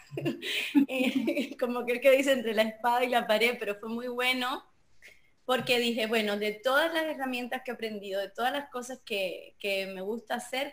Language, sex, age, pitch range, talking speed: Spanish, female, 20-39, 215-265 Hz, 195 wpm